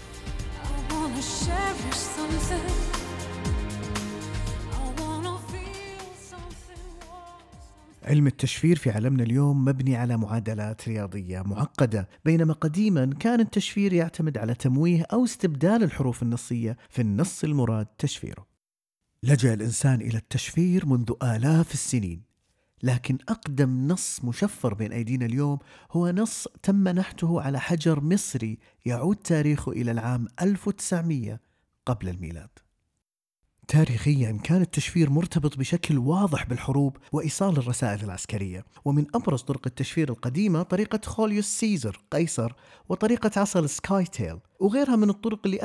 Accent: Lebanese